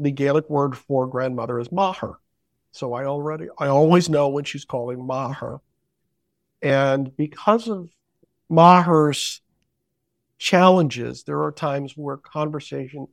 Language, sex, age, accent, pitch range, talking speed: English, male, 50-69, American, 140-170 Hz, 125 wpm